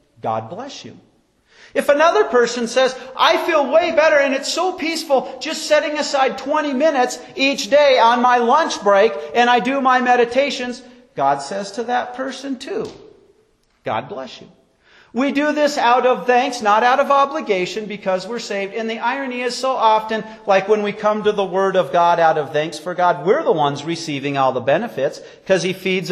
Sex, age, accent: male, 40-59, American